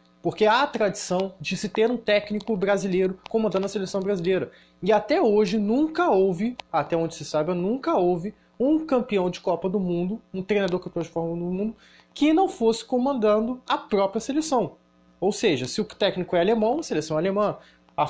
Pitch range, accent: 175-225 Hz, Brazilian